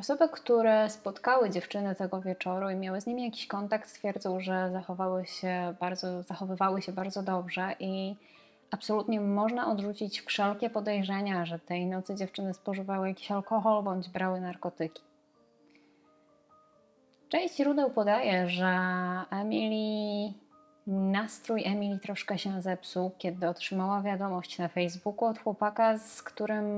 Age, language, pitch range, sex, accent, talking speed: 20-39, Polish, 180-215 Hz, female, native, 125 wpm